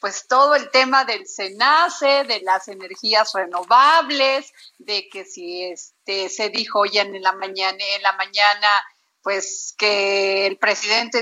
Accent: Mexican